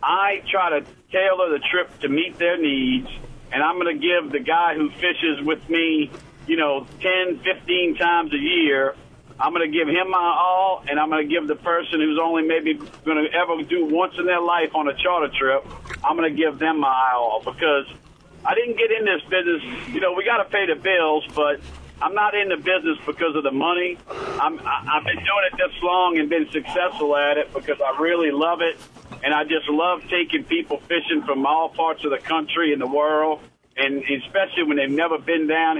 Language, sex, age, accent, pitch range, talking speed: English, male, 50-69, American, 150-180 Hz, 220 wpm